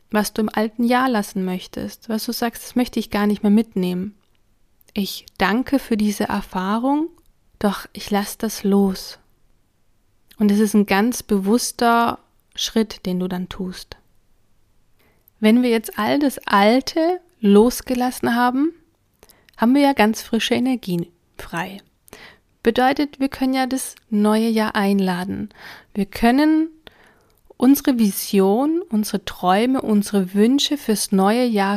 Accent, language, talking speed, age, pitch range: German, German, 135 wpm, 30-49, 195-240 Hz